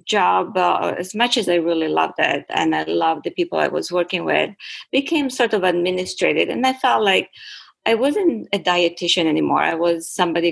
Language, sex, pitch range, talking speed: English, female, 165-205 Hz, 195 wpm